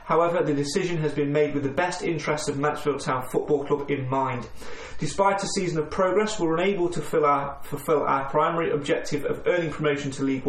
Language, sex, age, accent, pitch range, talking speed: English, male, 30-49, British, 145-175 Hz, 200 wpm